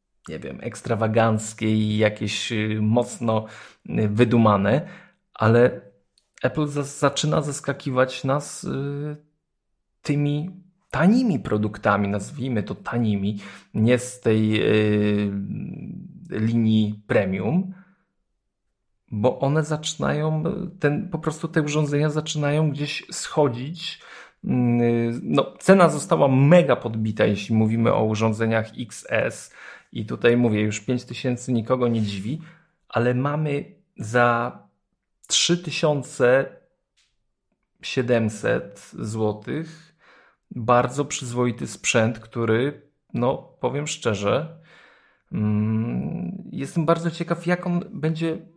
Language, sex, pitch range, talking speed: Polish, male, 110-160 Hz, 85 wpm